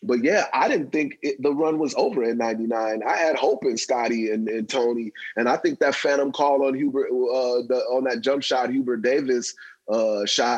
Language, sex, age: English, male, 20-39